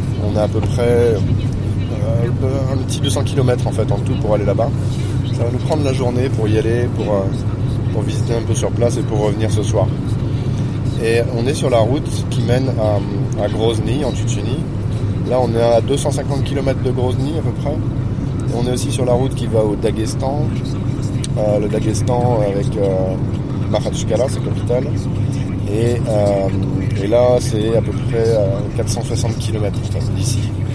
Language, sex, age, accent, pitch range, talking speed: French, male, 20-39, French, 110-125 Hz, 180 wpm